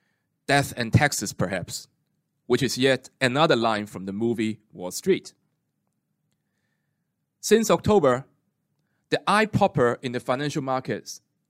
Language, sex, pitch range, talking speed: English, male, 125-170 Hz, 120 wpm